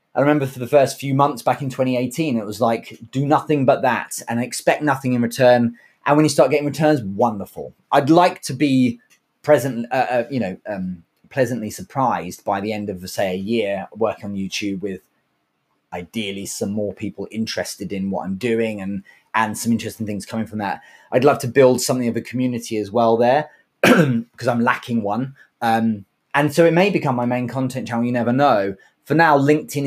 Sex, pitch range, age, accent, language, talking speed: male, 115-145 Hz, 20-39, British, English, 200 wpm